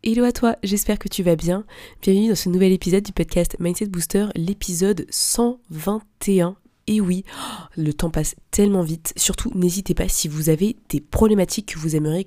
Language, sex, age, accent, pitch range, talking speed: French, female, 20-39, French, 155-195 Hz, 180 wpm